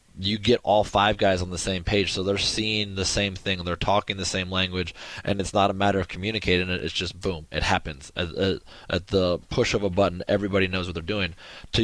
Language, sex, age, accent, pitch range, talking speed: English, male, 20-39, American, 95-110 Hz, 230 wpm